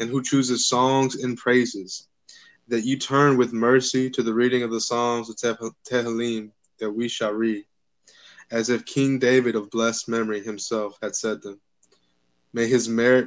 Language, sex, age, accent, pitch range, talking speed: English, male, 20-39, American, 115-125 Hz, 165 wpm